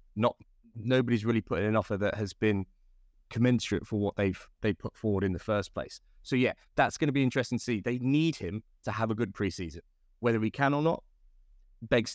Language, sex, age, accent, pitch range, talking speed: English, male, 20-39, British, 100-125 Hz, 210 wpm